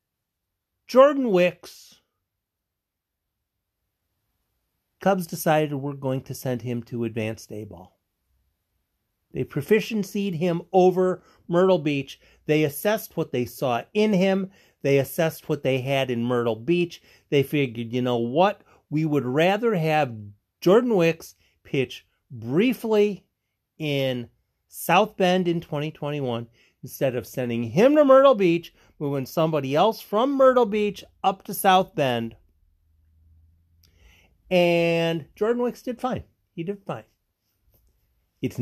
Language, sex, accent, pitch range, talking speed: English, male, American, 120-195 Hz, 120 wpm